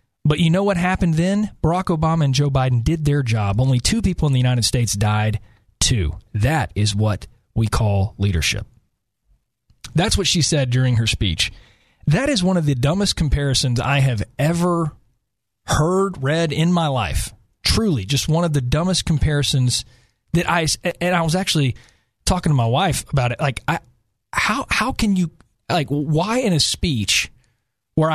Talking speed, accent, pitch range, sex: 175 wpm, American, 120-170 Hz, male